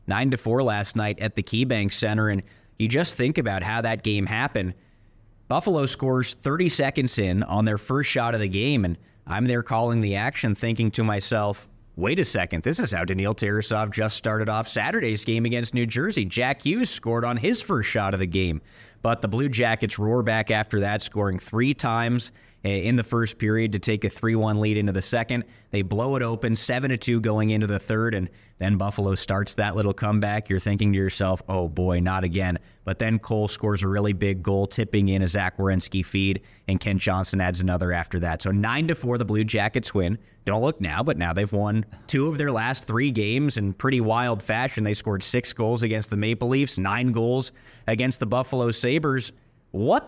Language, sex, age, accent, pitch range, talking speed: English, male, 30-49, American, 100-120 Hz, 205 wpm